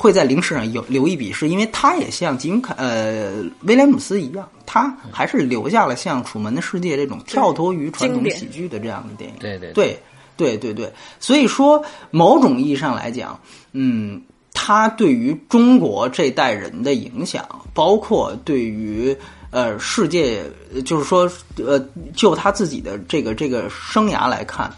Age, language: 30-49, French